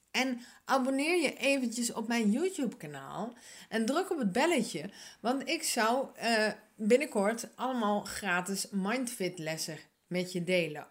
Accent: Dutch